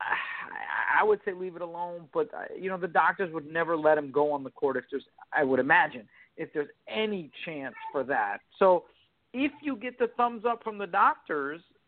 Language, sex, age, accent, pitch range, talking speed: English, male, 50-69, American, 165-225 Hz, 200 wpm